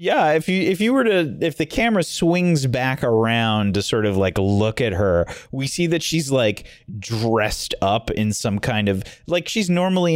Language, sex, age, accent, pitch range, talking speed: English, male, 30-49, American, 100-170 Hz, 200 wpm